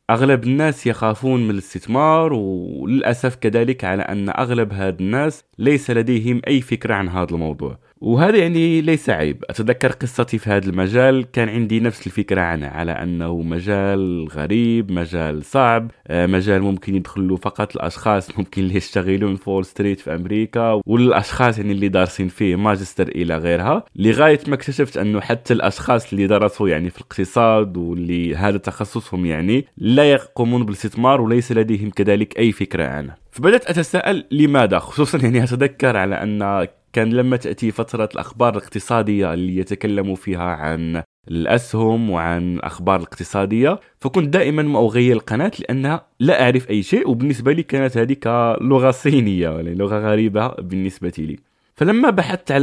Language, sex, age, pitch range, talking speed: Arabic, male, 20-39, 95-125 Hz, 150 wpm